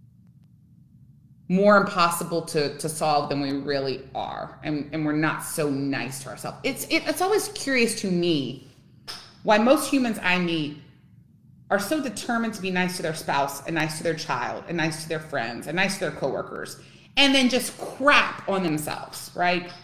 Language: English